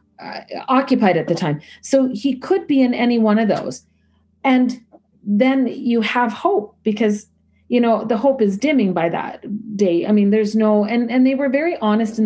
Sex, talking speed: female, 190 wpm